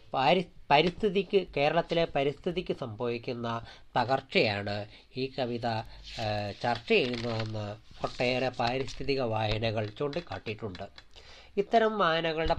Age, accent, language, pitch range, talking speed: 30-49, native, Malayalam, 115-160 Hz, 70 wpm